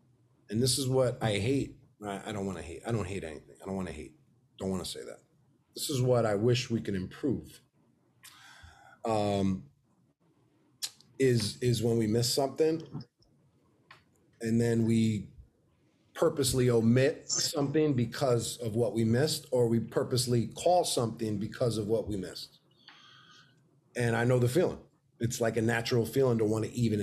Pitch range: 110-130 Hz